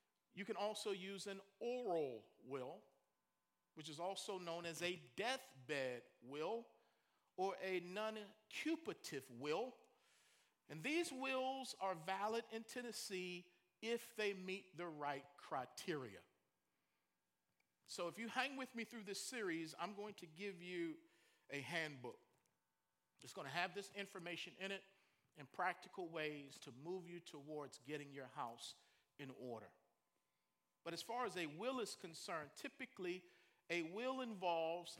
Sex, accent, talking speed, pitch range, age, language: male, American, 135 wpm, 155-220 Hz, 40-59, English